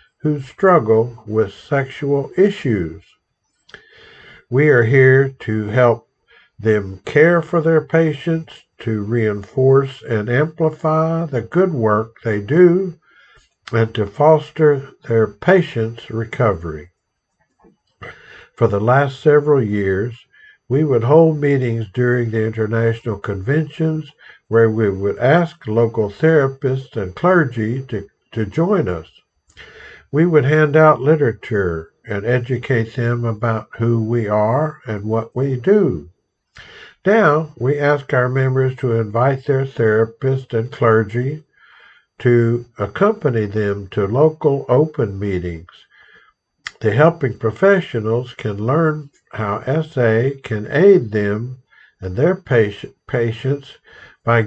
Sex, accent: male, American